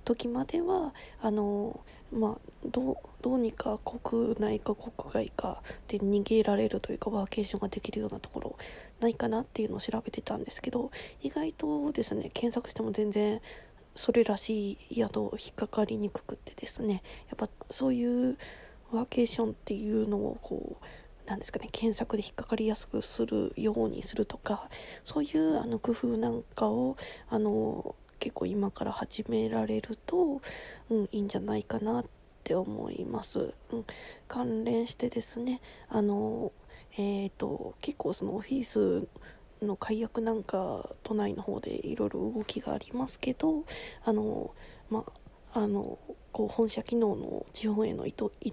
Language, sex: Japanese, female